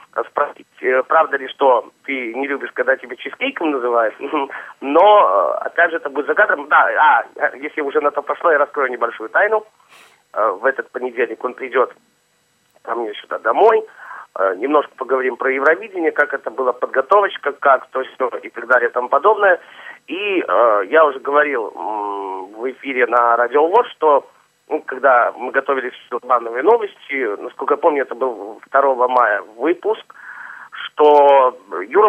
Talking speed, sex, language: 150 wpm, male, Russian